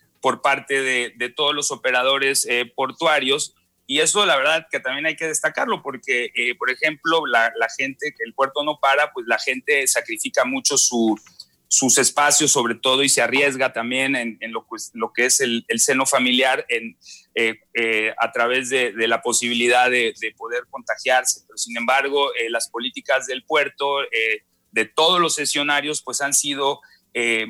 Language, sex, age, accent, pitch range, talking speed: Spanish, male, 30-49, Mexican, 125-175 Hz, 185 wpm